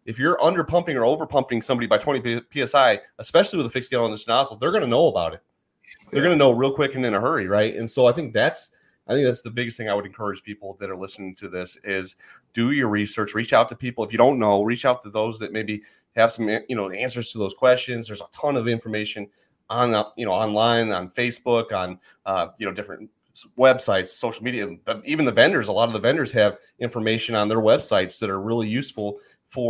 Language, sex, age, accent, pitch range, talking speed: English, male, 30-49, American, 100-120 Hz, 235 wpm